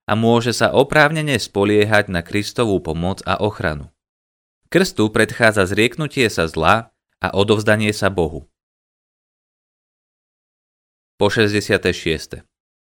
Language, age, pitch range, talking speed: Slovak, 30-49, 90-115 Hz, 100 wpm